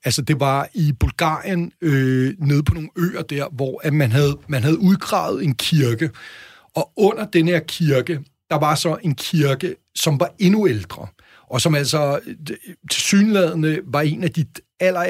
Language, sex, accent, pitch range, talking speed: Danish, male, native, 135-170 Hz, 170 wpm